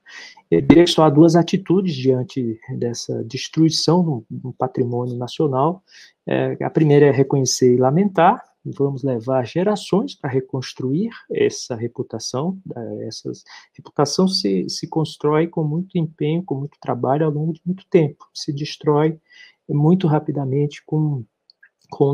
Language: Portuguese